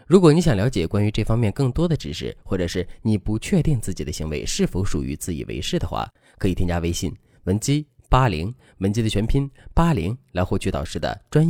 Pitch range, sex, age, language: 90-140 Hz, male, 20-39, Chinese